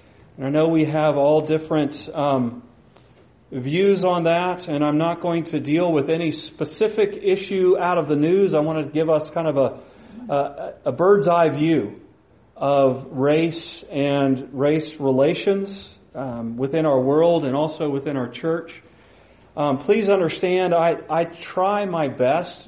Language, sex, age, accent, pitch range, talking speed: English, male, 40-59, American, 140-170 Hz, 160 wpm